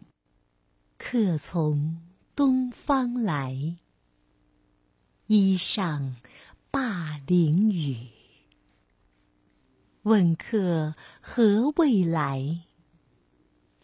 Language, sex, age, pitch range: Chinese, female, 50-69, 145-215 Hz